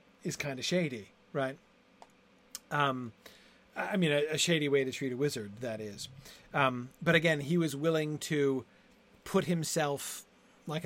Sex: male